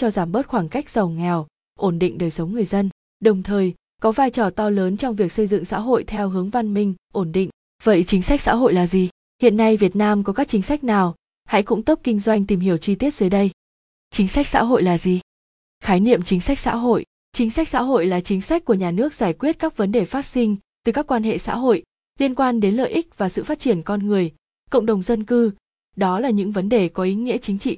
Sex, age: female, 20-39